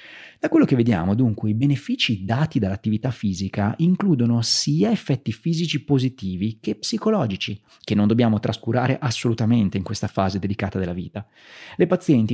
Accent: native